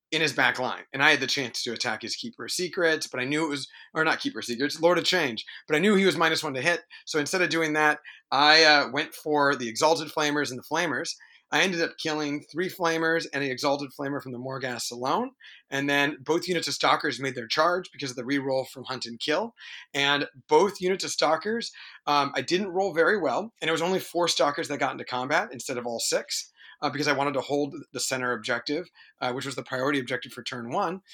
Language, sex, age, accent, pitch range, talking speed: English, male, 30-49, American, 135-165 Hz, 245 wpm